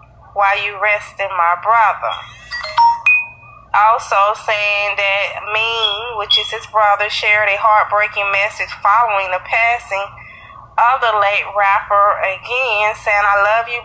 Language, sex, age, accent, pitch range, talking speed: English, female, 20-39, American, 195-230 Hz, 125 wpm